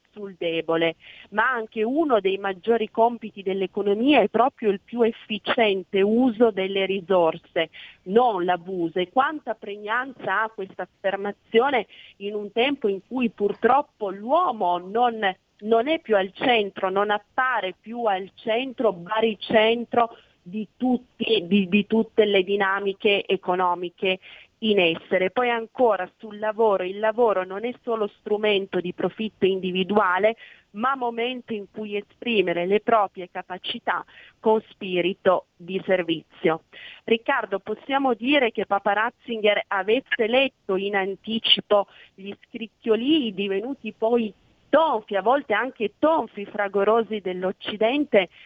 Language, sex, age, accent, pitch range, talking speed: Italian, female, 40-59, native, 195-230 Hz, 125 wpm